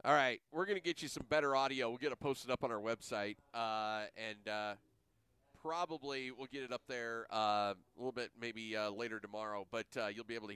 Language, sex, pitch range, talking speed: English, male, 110-150 Hz, 225 wpm